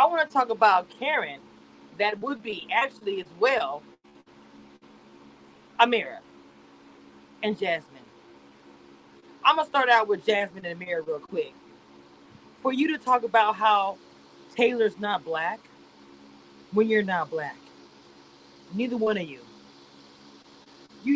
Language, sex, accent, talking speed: English, female, American, 120 wpm